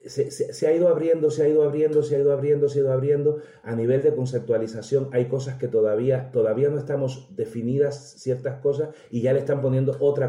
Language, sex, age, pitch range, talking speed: Spanish, male, 40-59, 120-150 Hz, 220 wpm